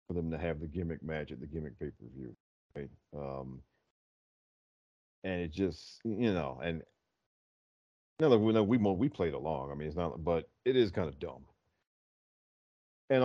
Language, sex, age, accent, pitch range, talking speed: English, male, 40-59, American, 80-105 Hz, 180 wpm